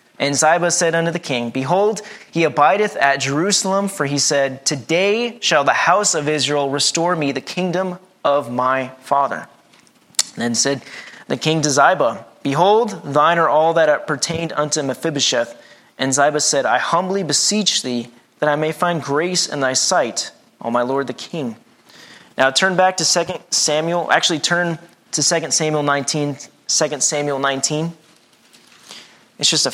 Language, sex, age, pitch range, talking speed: English, male, 30-49, 140-175 Hz, 160 wpm